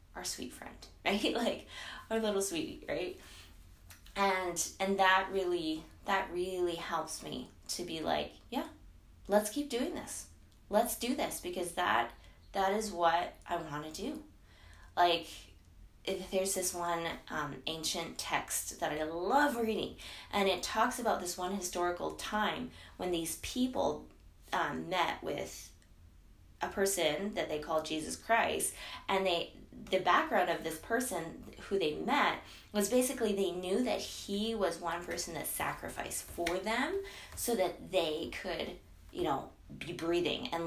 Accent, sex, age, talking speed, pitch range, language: American, female, 20-39, 150 wpm, 165-210 Hz, English